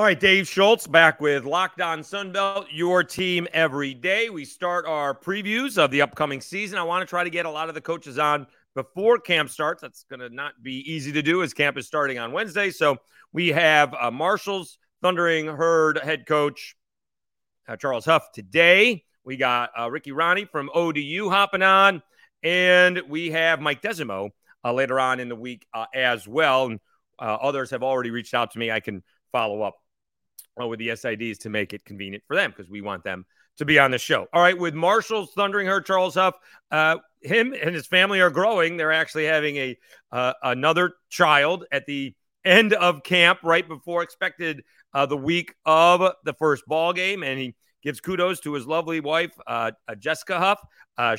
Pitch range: 135-180 Hz